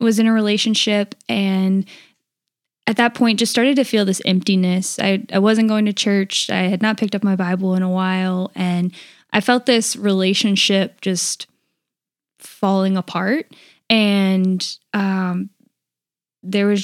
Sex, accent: female, American